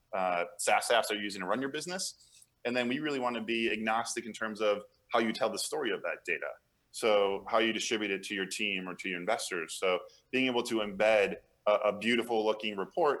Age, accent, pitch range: 20-39, American, 100-120 Hz